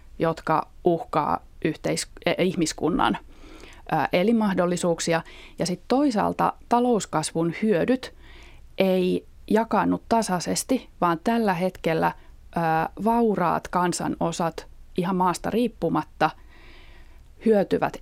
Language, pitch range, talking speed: Finnish, 165-210 Hz, 85 wpm